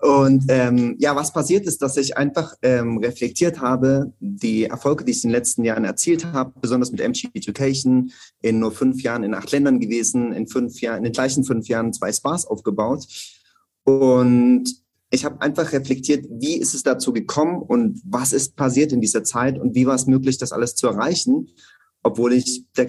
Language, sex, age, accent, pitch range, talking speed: German, male, 30-49, German, 120-140 Hz, 195 wpm